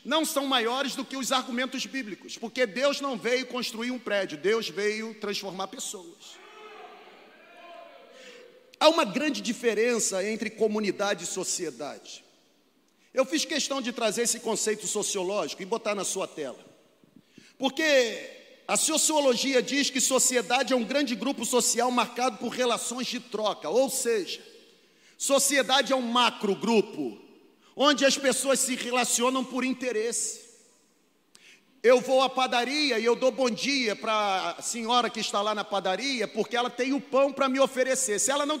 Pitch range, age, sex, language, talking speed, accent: 230-280 Hz, 40-59, male, Portuguese, 150 wpm, Brazilian